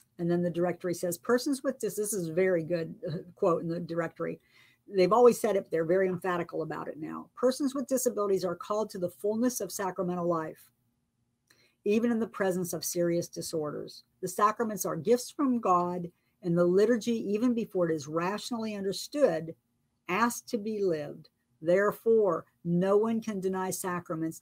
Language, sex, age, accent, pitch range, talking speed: English, female, 50-69, American, 160-210 Hz, 175 wpm